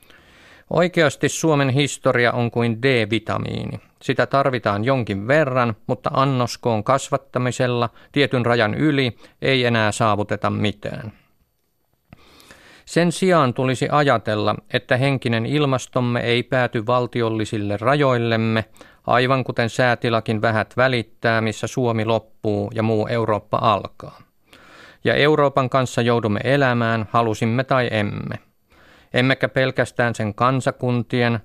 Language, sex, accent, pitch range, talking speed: Finnish, male, native, 110-130 Hz, 105 wpm